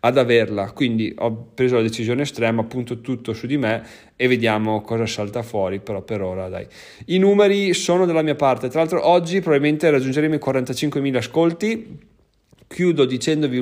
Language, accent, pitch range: Italian, native, 115-140 Hz